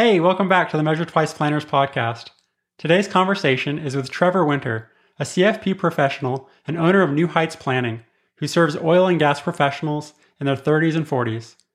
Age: 30-49